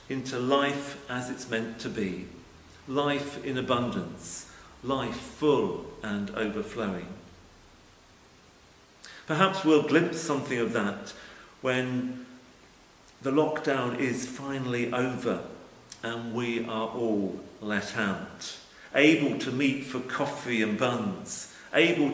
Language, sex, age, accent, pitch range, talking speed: English, male, 50-69, British, 115-135 Hz, 110 wpm